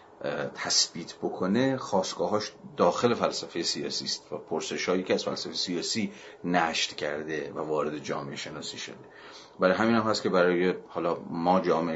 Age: 40-59